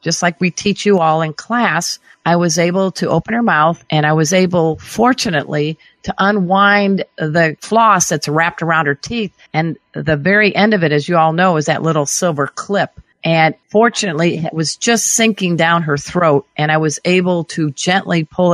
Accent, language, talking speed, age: American, English, 195 wpm, 50-69